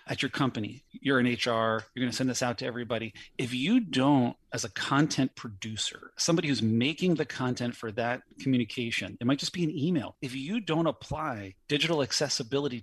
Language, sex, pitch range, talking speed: English, male, 120-155 Hz, 190 wpm